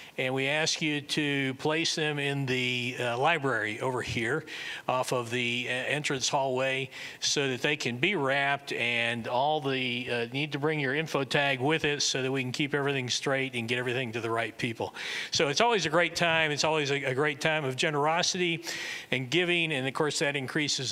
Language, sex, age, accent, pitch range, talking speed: English, male, 40-59, American, 120-150 Hz, 205 wpm